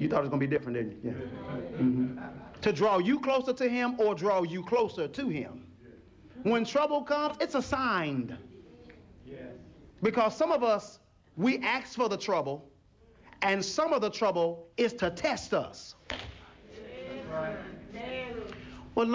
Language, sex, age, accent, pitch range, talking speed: English, male, 40-59, American, 140-195 Hz, 150 wpm